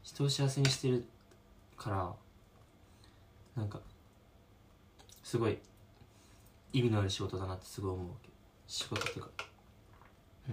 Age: 20-39